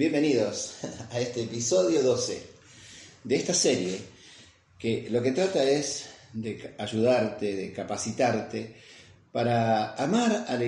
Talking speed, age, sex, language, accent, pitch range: 120 wpm, 40-59, male, Spanish, Argentinian, 105-130 Hz